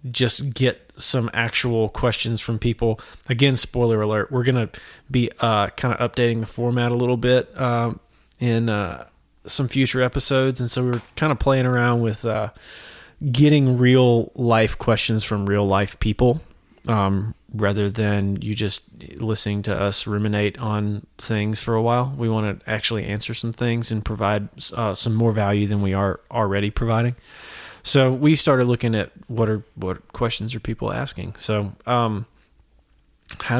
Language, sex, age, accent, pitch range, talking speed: English, male, 20-39, American, 105-125 Hz, 170 wpm